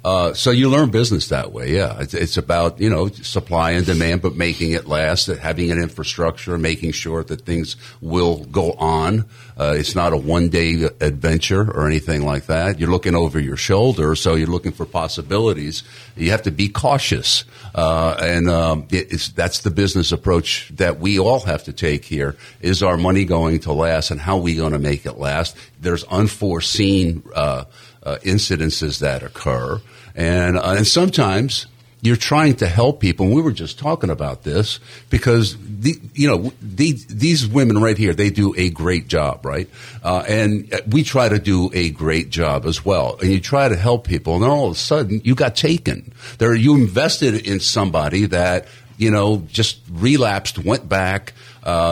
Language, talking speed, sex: English, 185 wpm, male